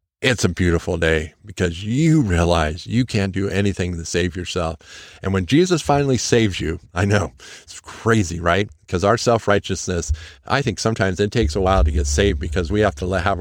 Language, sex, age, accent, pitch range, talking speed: English, male, 50-69, American, 85-105 Hz, 190 wpm